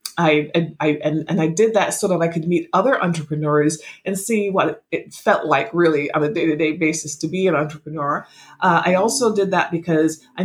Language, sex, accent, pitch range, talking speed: English, female, American, 160-210 Hz, 210 wpm